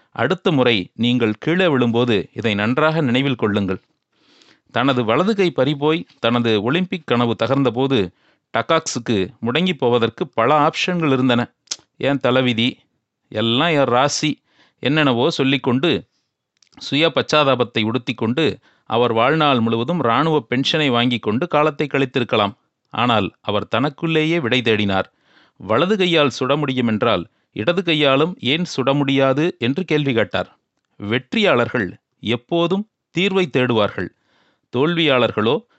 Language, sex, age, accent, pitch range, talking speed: Tamil, male, 40-59, native, 120-160 Hz, 105 wpm